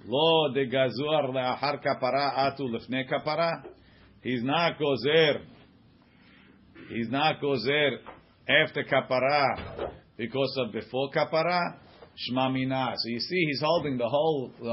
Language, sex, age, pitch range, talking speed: English, male, 40-59, 125-155 Hz, 105 wpm